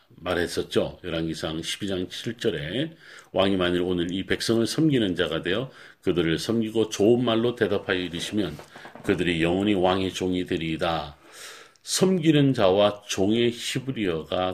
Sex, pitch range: male, 90-130 Hz